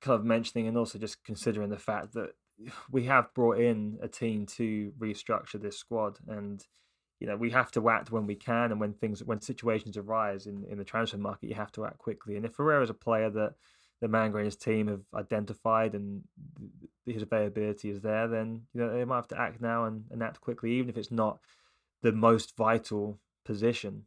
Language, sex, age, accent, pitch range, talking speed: English, male, 20-39, British, 105-115 Hz, 215 wpm